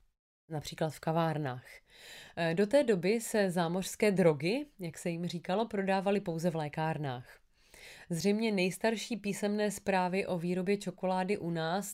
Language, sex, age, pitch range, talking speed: Czech, female, 30-49, 160-205 Hz, 130 wpm